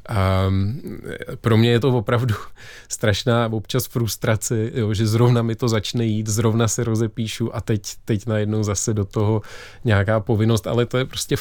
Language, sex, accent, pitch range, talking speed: Czech, male, native, 100-115 Hz, 165 wpm